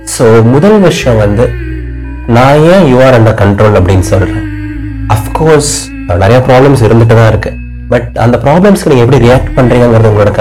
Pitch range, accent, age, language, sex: 100-135 Hz, native, 30-49, Tamil, male